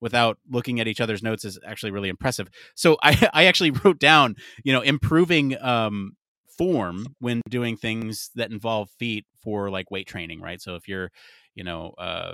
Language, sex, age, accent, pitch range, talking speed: English, male, 30-49, American, 95-120 Hz, 185 wpm